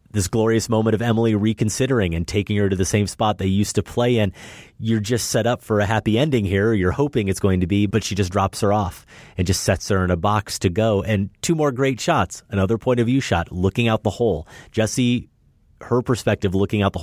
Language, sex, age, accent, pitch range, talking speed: English, male, 30-49, American, 90-115 Hz, 240 wpm